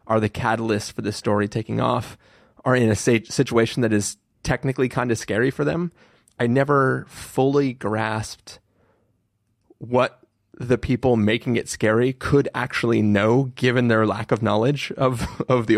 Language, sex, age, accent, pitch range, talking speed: English, male, 30-49, American, 110-125 Hz, 160 wpm